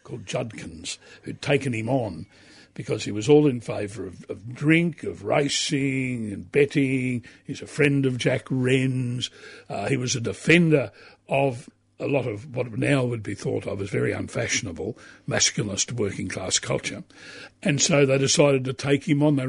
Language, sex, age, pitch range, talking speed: English, male, 60-79, 110-145 Hz, 170 wpm